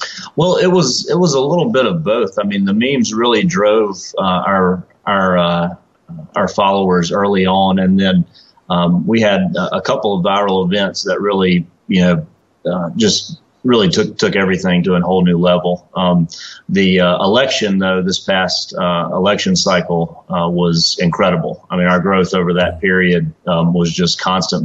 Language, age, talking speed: English, 30-49, 180 wpm